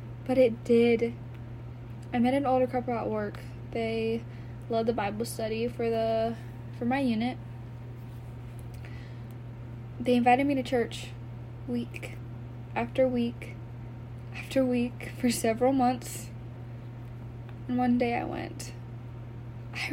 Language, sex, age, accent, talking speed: English, female, 10-29, American, 115 wpm